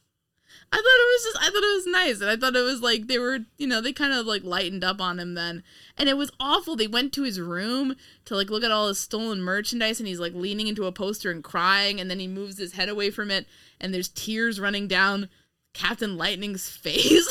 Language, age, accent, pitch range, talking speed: English, 20-39, American, 175-245 Hz, 250 wpm